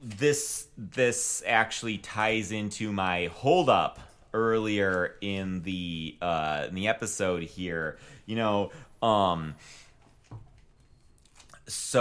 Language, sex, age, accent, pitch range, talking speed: English, male, 30-49, American, 95-120 Hz, 95 wpm